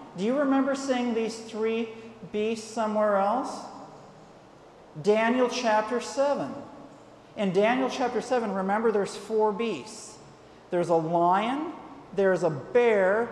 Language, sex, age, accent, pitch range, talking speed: English, male, 40-59, American, 195-235 Hz, 115 wpm